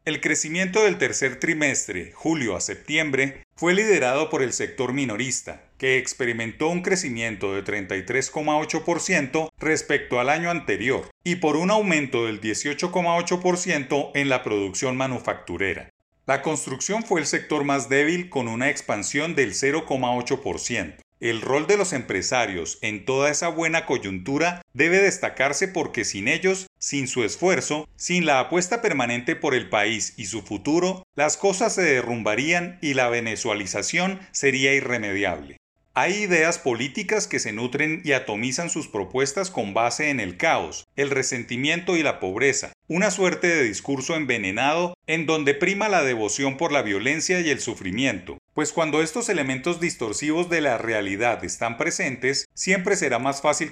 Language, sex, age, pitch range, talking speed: Spanish, male, 40-59, 125-170 Hz, 150 wpm